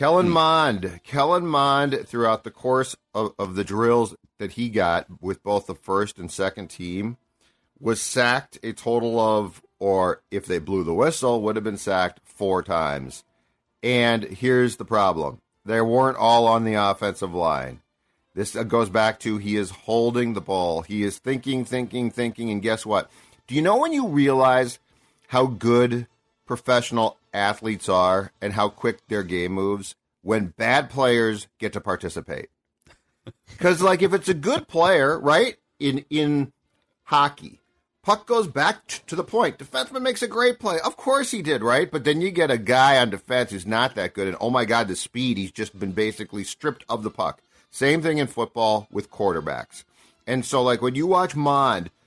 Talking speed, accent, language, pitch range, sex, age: 180 wpm, American, English, 100-135 Hz, male, 40-59